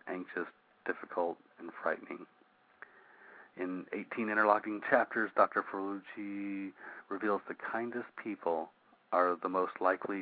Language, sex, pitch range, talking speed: English, male, 85-105 Hz, 105 wpm